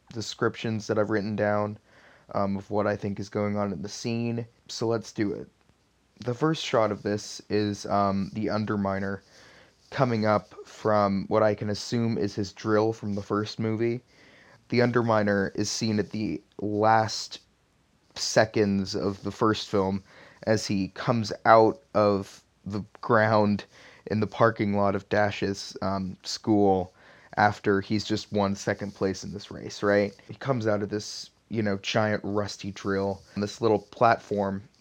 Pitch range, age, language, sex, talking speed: 100-110 Hz, 20-39, English, male, 160 wpm